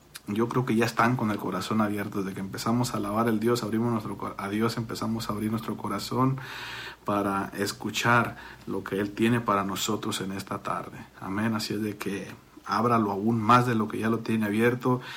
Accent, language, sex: Mexican, Spanish, male